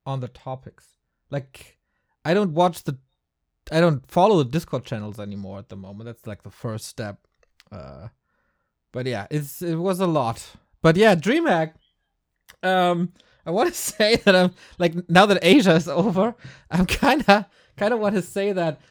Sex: male